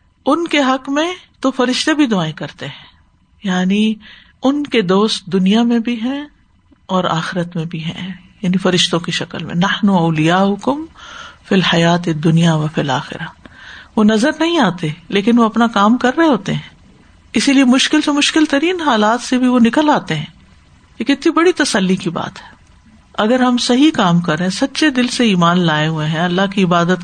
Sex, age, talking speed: female, 50-69, 190 wpm